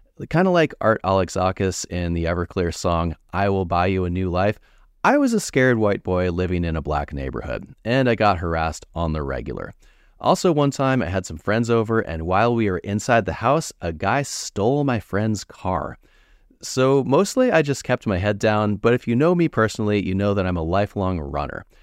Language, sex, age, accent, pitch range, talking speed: English, male, 30-49, American, 85-120 Hz, 210 wpm